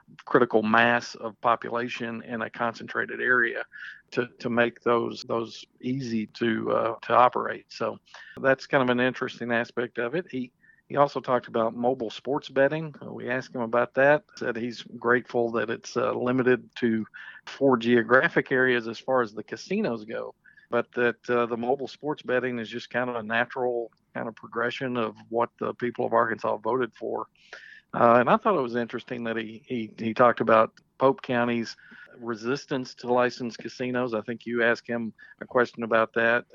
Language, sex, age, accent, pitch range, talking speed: English, male, 50-69, American, 115-125 Hz, 180 wpm